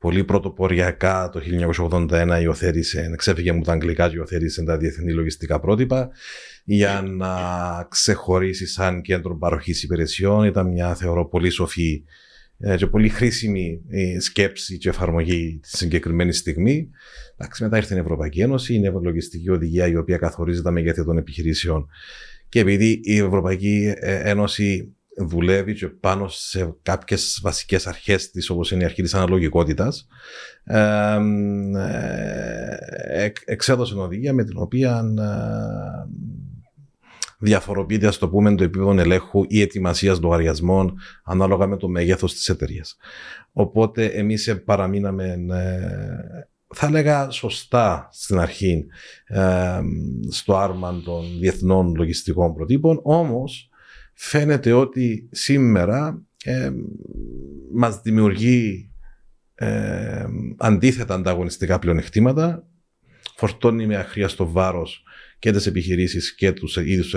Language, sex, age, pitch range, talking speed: Greek, male, 40-59, 85-110 Hz, 115 wpm